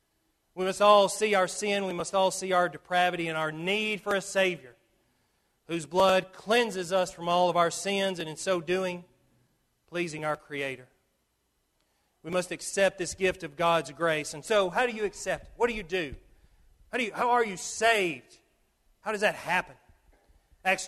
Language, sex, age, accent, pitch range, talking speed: English, male, 40-59, American, 150-200 Hz, 185 wpm